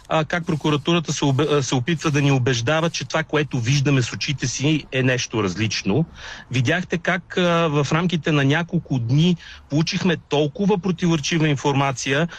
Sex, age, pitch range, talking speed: male, 40-59, 135-165 Hz, 150 wpm